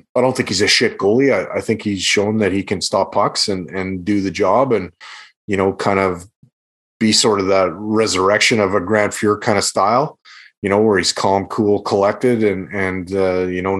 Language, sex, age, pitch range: English, male, 30-49, 95-110 Hz